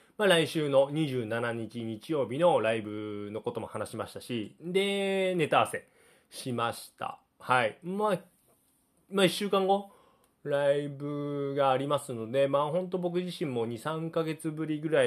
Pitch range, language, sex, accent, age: 115-165 Hz, Japanese, male, native, 20-39